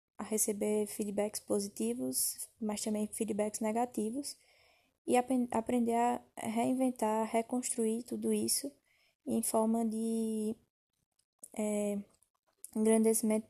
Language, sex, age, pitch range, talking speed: Portuguese, female, 10-29, 205-230 Hz, 85 wpm